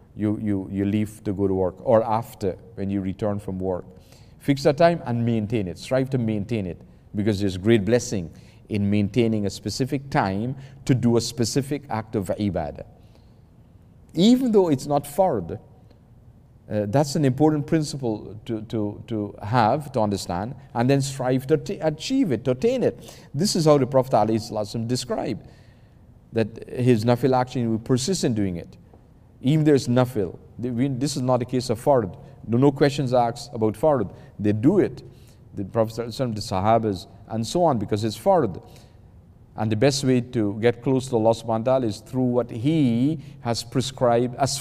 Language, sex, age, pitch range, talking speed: English, male, 50-69, 105-130 Hz, 175 wpm